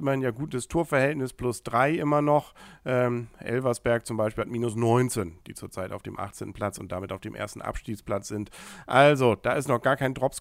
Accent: German